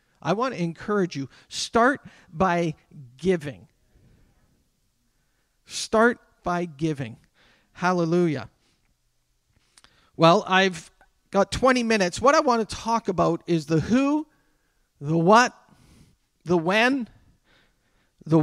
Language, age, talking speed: English, 40-59, 100 wpm